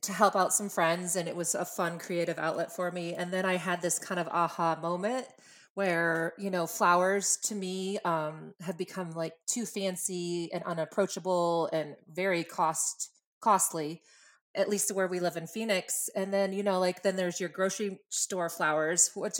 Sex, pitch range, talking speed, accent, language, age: female, 165-195 Hz, 185 wpm, American, English, 30-49